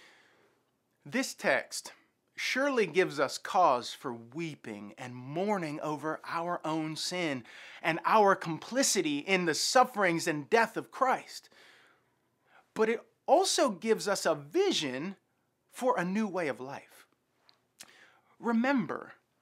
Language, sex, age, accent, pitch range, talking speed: English, male, 30-49, American, 185-265 Hz, 115 wpm